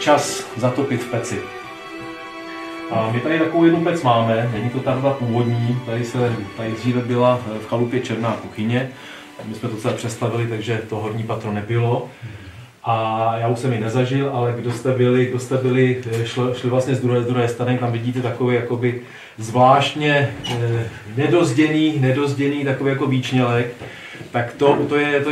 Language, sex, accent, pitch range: Czech, male, native, 115-130 Hz